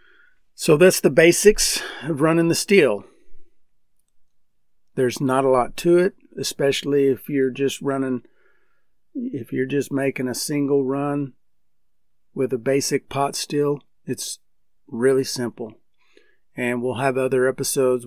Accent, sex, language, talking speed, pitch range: American, male, English, 130 wpm, 120-140 Hz